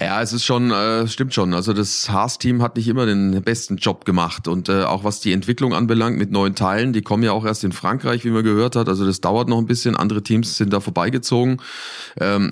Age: 30-49